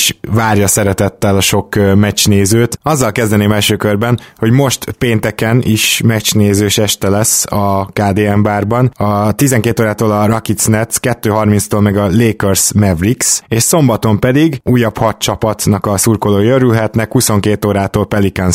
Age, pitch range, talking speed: 20-39, 95-115 Hz, 140 wpm